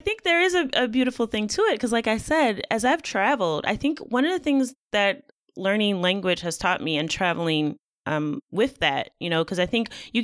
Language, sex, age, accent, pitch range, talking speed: English, female, 20-39, American, 165-245 Hz, 235 wpm